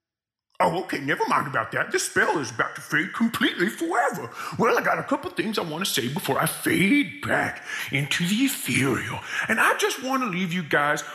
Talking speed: 210 wpm